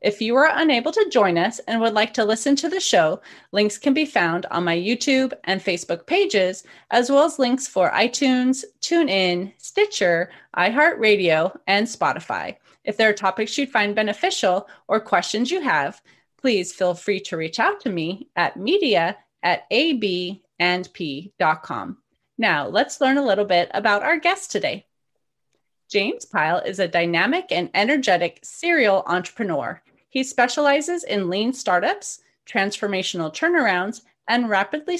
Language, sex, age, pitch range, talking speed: English, female, 30-49, 185-285 Hz, 145 wpm